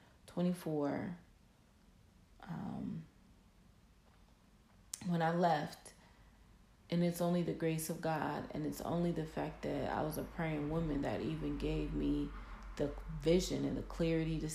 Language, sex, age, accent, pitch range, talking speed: English, female, 30-49, American, 155-185 Hz, 135 wpm